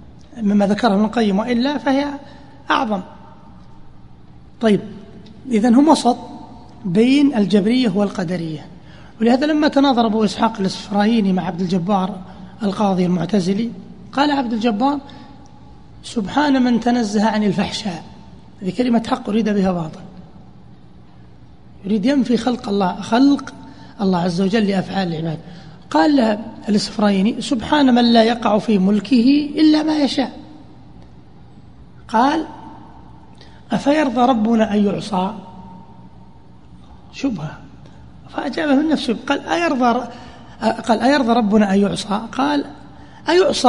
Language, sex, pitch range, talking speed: Arabic, male, 185-245 Hz, 100 wpm